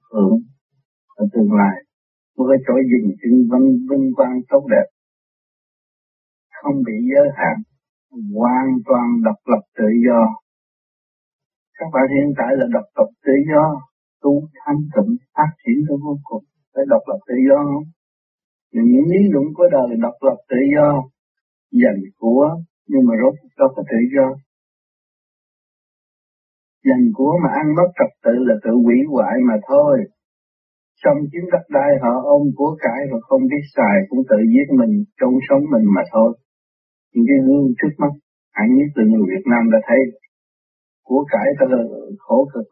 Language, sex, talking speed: Vietnamese, male, 165 wpm